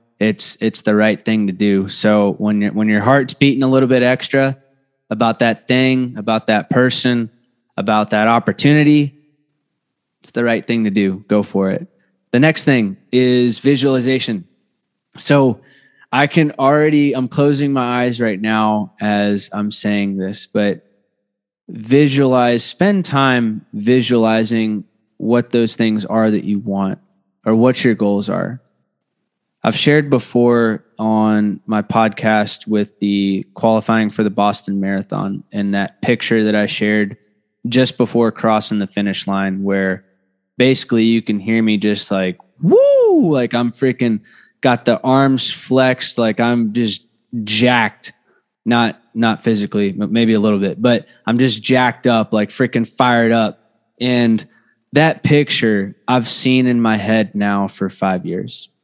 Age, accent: 20-39, American